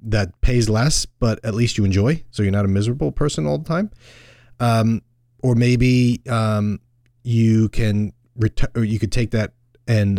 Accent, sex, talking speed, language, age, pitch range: American, male, 170 wpm, English, 30-49, 105-125 Hz